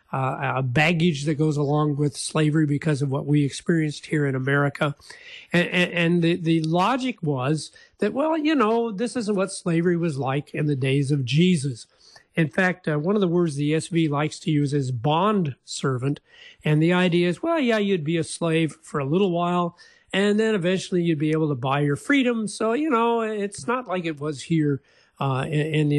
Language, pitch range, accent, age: English, 145-180 Hz, American, 50-69